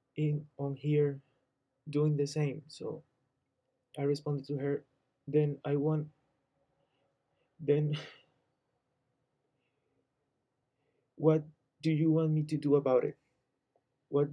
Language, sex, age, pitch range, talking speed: English, male, 20-39, 130-150 Hz, 105 wpm